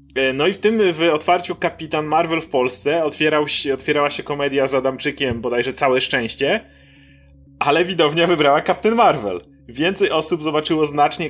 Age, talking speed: 30-49, 155 wpm